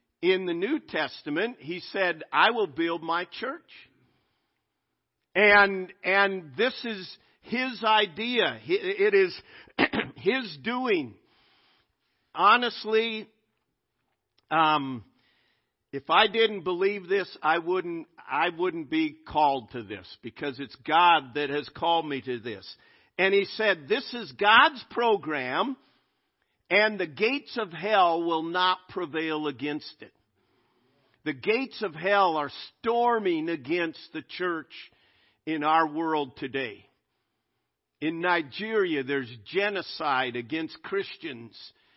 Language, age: English, 50-69